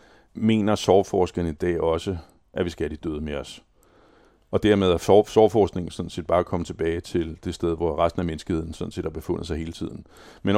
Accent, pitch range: native, 80-95 Hz